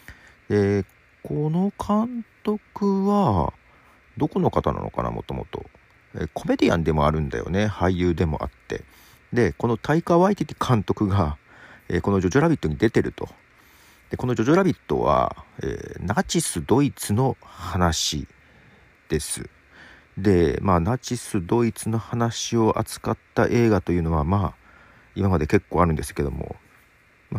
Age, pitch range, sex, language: 40-59, 85-125 Hz, male, Japanese